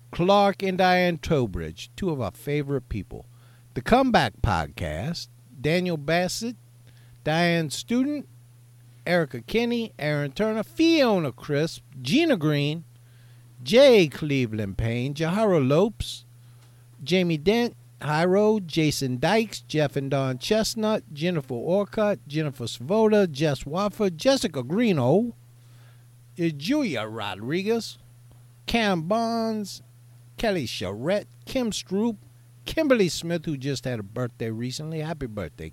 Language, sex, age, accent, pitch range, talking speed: English, male, 50-69, American, 120-195 Hz, 105 wpm